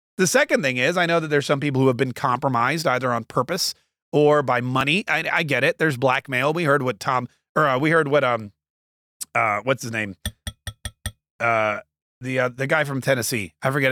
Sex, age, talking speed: male, 30-49, 210 wpm